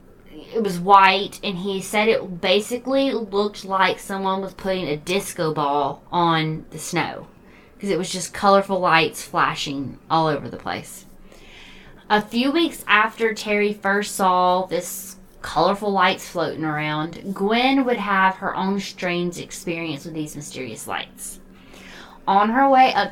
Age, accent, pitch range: 20-39, American, 170-210 Hz